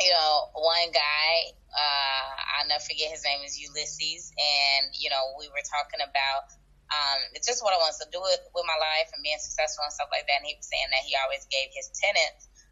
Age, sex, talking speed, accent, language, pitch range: 20-39, female, 240 wpm, American, English, 140-180 Hz